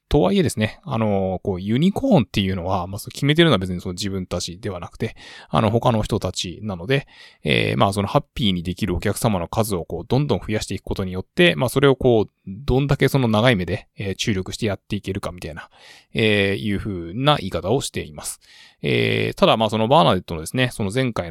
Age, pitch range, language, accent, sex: 20-39, 95-120 Hz, Japanese, native, male